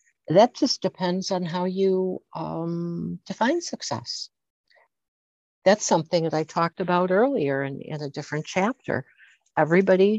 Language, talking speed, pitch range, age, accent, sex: English, 130 wpm, 145-195 Hz, 60-79, American, female